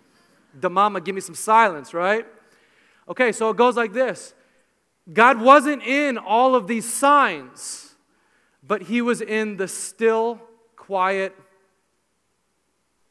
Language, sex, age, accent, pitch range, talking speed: English, male, 40-59, American, 140-190 Hz, 125 wpm